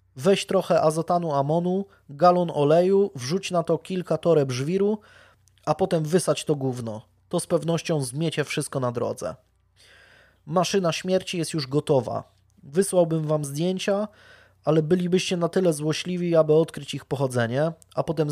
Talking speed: 140 wpm